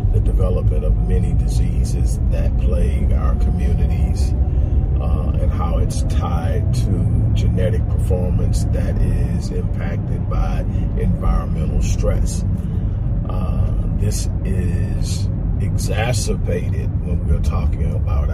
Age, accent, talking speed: 40-59, American, 100 wpm